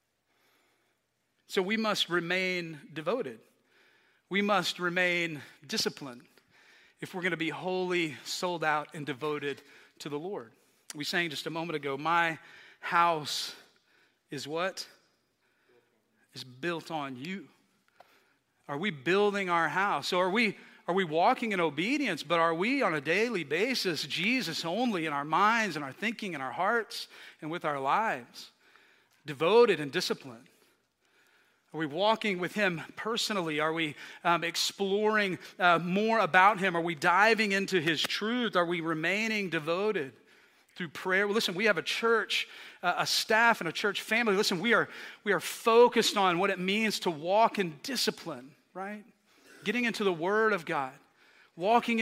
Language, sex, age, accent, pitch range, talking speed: English, male, 40-59, American, 165-215 Hz, 155 wpm